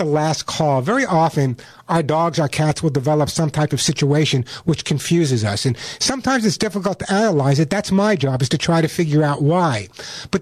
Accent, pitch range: American, 155-205 Hz